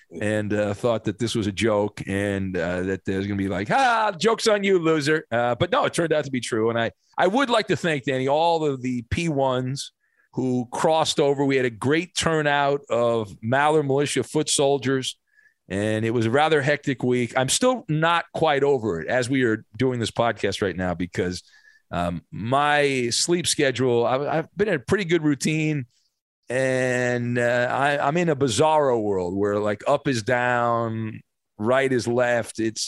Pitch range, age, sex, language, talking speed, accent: 110-150 Hz, 40-59, male, English, 195 wpm, American